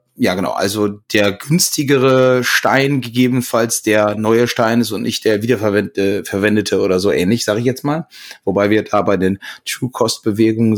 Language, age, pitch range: German, 30-49, 105-125 Hz